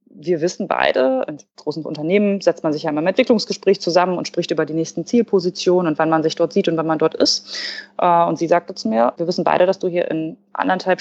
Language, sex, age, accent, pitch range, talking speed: German, female, 20-39, German, 160-190 Hz, 240 wpm